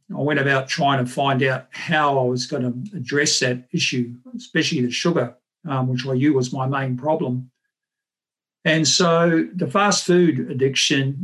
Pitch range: 130-155 Hz